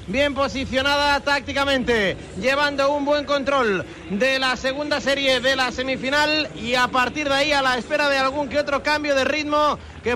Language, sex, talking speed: Spanish, male, 175 wpm